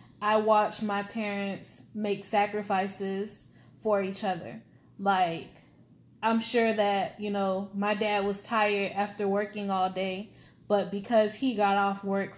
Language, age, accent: English, 10-29, American